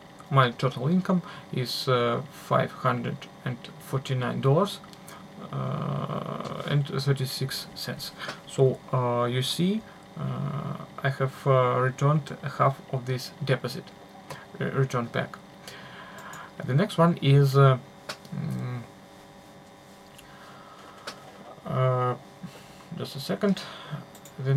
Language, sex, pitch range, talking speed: Russian, male, 130-165 Hz, 100 wpm